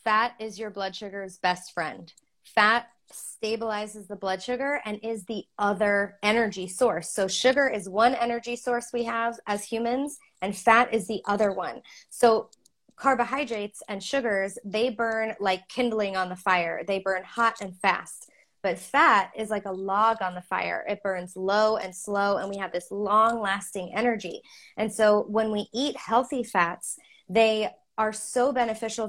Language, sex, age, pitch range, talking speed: English, female, 20-39, 195-230 Hz, 165 wpm